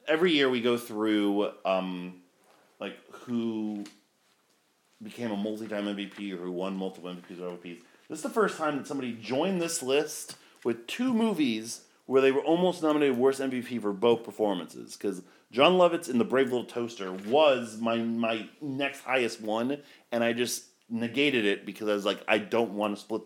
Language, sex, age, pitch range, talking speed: English, male, 30-49, 100-135 Hz, 180 wpm